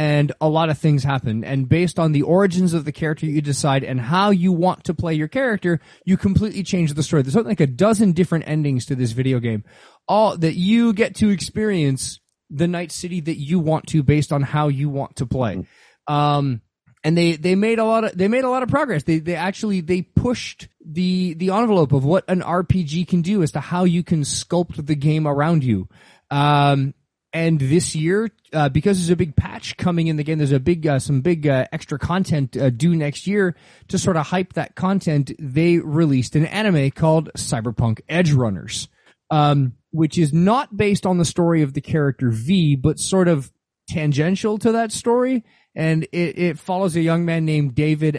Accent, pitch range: American, 145-180 Hz